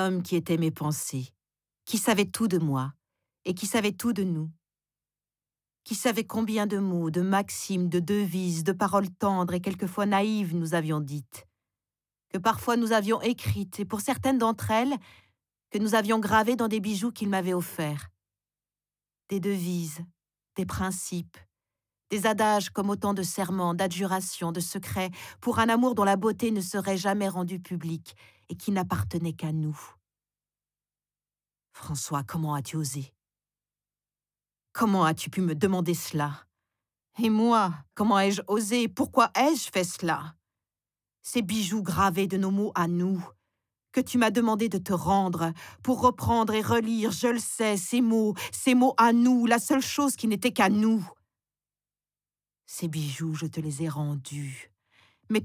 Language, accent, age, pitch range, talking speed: French, French, 40-59, 160-220 Hz, 155 wpm